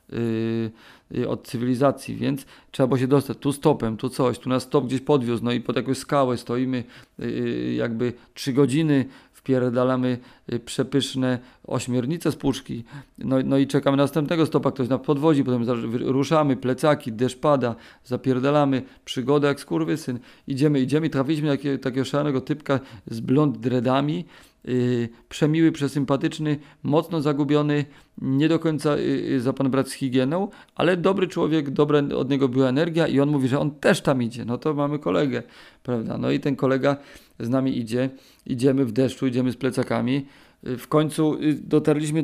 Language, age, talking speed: Polish, 40-59, 160 wpm